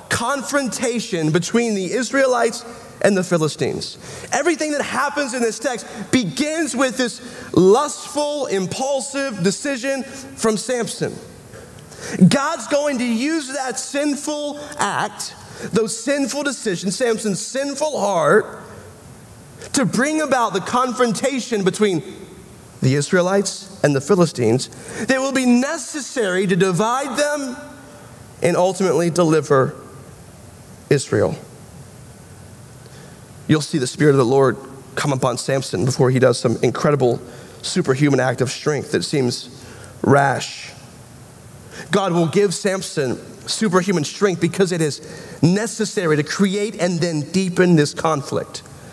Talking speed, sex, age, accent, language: 115 wpm, male, 30-49, American, English